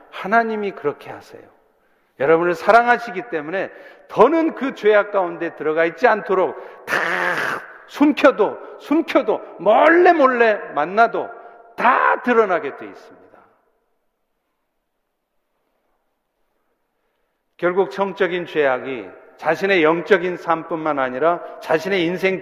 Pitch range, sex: 165-250 Hz, male